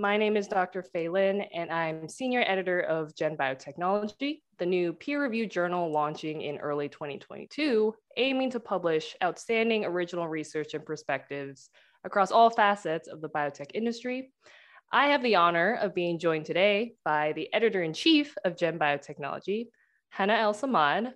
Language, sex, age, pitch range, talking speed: English, female, 20-39, 165-225 Hz, 150 wpm